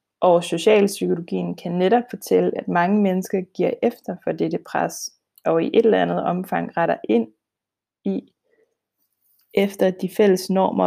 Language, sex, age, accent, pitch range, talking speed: Danish, female, 20-39, native, 170-205 Hz, 145 wpm